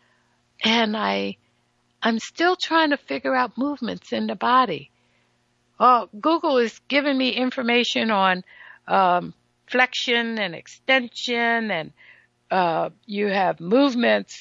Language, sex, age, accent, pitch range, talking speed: English, female, 60-79, American, 185-255 Hz, 120 wpm